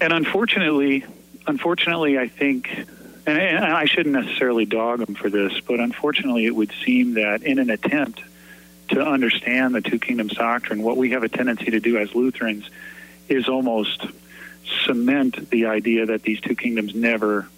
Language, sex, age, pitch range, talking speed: English, male, 40-59, 110-140 Hz, 160 wpm